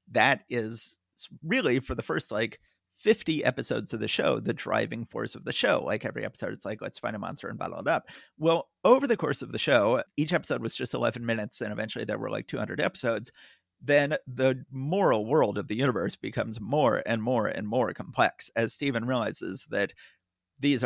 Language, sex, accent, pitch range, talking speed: English, male, American, 115-140 Hz, 200 wpm